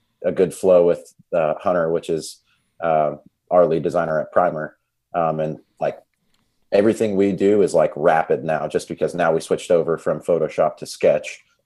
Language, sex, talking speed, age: English, male, 175 wpm, 30-49